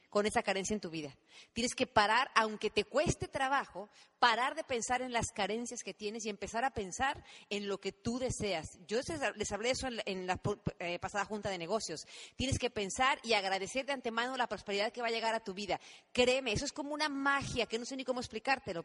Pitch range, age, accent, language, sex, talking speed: 210-265 Hz, 40-59, Mexican, English, female, 225 wpm